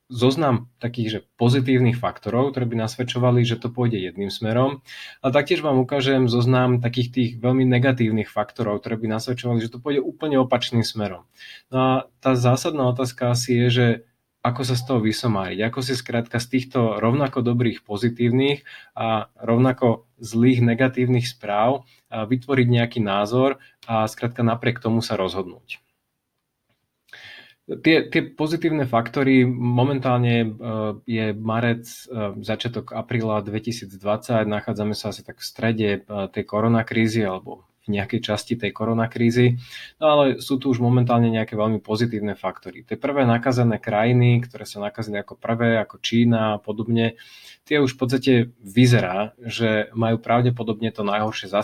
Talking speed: 145 wpm